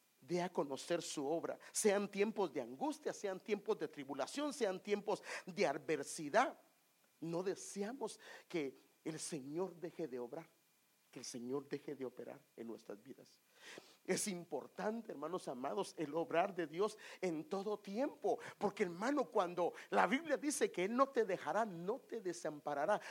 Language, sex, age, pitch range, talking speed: English, male, 50-69, 160-215 Hz, 155 wpm